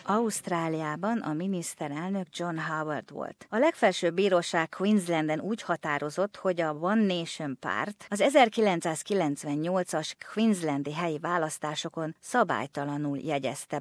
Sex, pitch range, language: female, 150-195 Hz, Hungarian